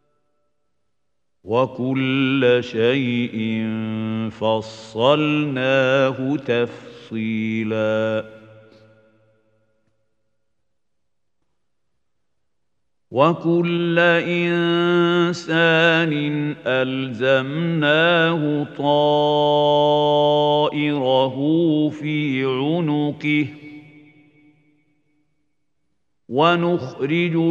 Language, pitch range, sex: Arabic, 125-155 Hz, male